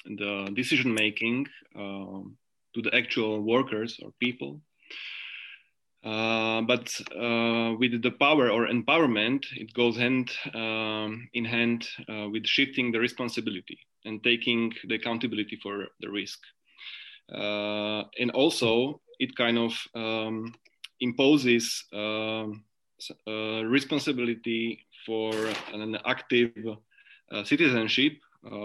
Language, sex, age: Slovak, male, 20-39